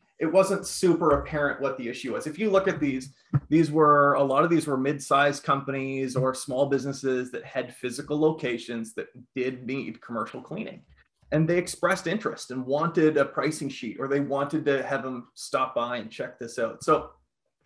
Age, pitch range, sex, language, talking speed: 30-49, 130-160 Hz, male, English, 190 wpm